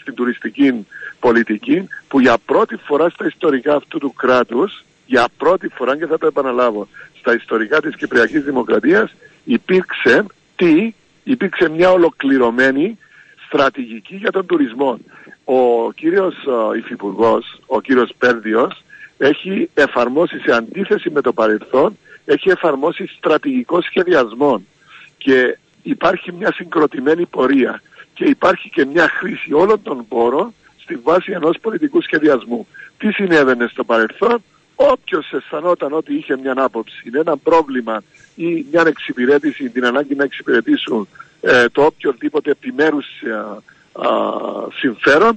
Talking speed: 125 wpm